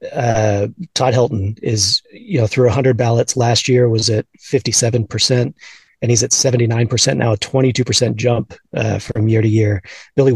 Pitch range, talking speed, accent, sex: 110-125 Hz, 170 wpm, American, male